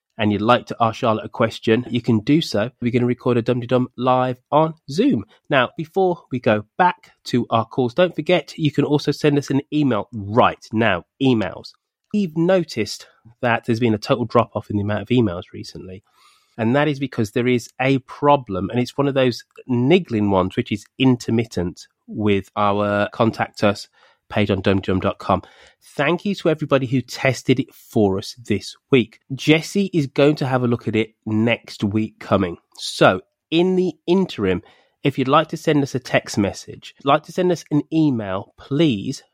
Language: English